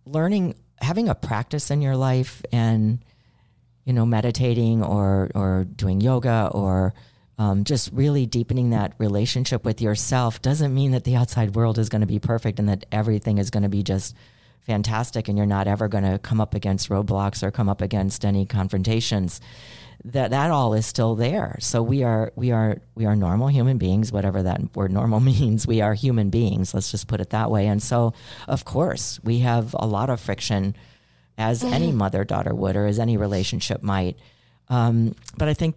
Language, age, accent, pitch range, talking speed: English, 40-59, American, 105-125 Hz, 185 wpm